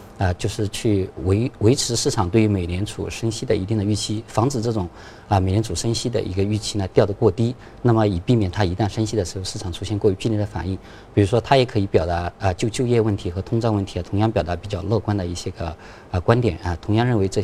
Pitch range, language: 95-115 Hz, Chinese